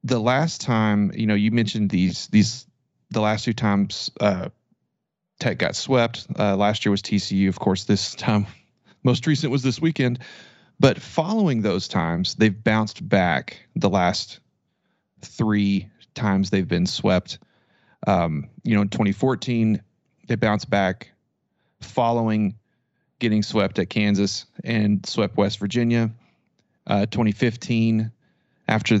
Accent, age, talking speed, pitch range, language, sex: American, 30-49, 130 wpm, 100-120 Hz, English, male